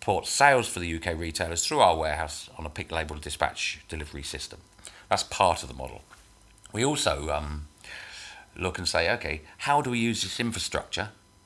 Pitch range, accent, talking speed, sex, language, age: 80-105 Hz, British, 180 wpm, male, English, 40-59